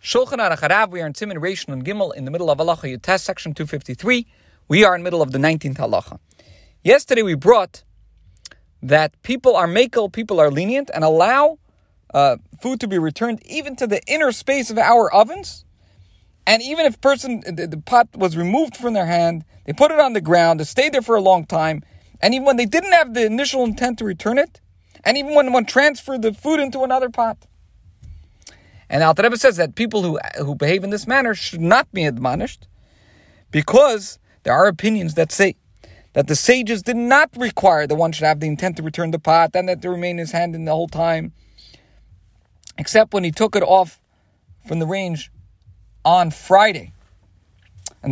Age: 40-59